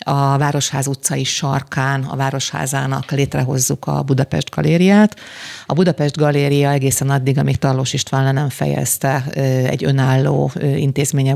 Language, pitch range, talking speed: Hungarian, 130-140 Hz, 120 wpm